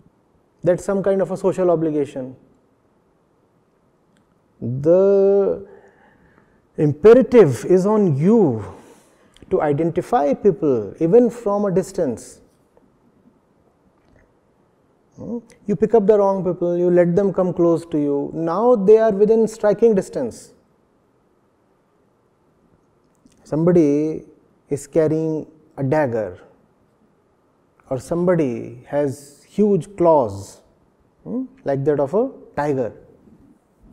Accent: Indian